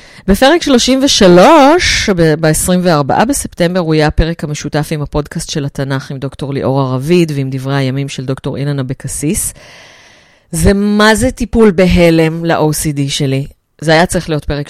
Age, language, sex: 30-49, Hebrew, female